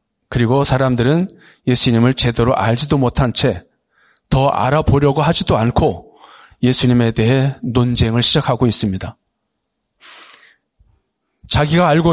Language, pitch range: Korean, 125-155 Hz